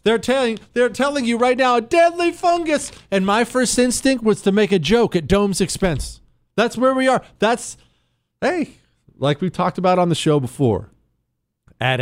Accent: American